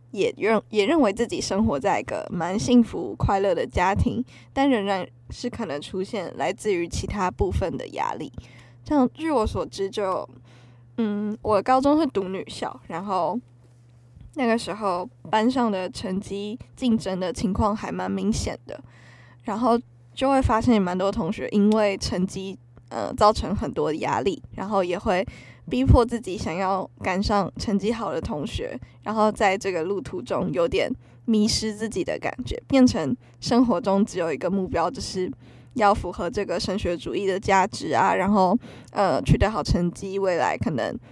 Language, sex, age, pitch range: Chinese, female, 10-29, 175-230 Hz